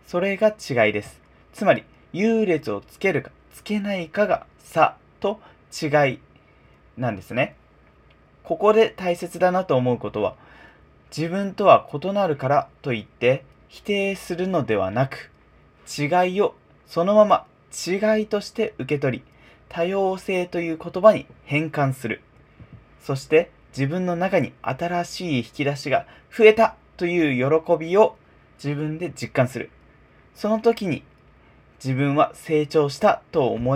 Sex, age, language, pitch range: male, 20-39, Japanese, 135-195 Hz